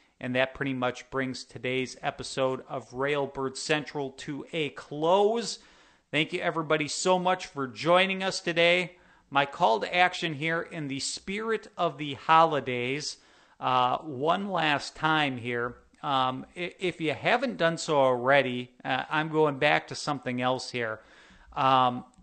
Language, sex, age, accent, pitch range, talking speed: English, male, 40-59, American, 130-170 Hz, 145 wpm